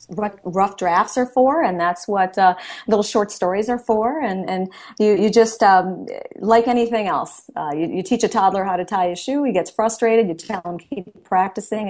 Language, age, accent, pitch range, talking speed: English, 40-59, American, 185-225 Hz, 205 wpm